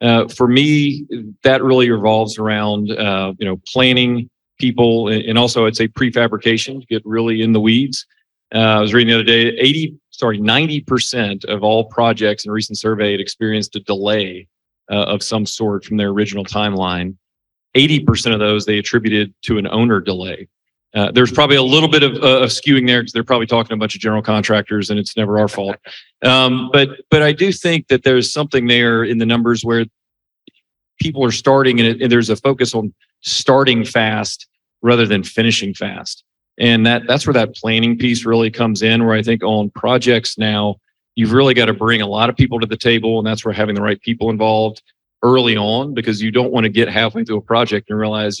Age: 40-59